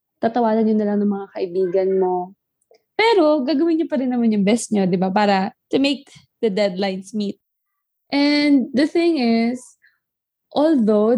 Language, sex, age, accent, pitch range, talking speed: Filipino, female, 20-39, native, 200-265 Hz, 160 wpm